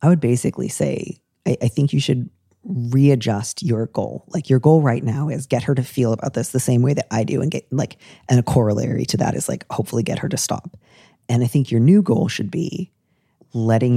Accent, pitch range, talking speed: American, 115-140 Hz, 230 wpm